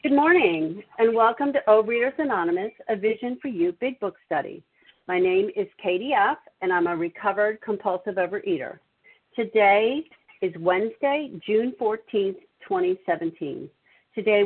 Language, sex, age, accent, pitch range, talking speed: English, female, 50-69, American, 180-240 Hz, 135 wpm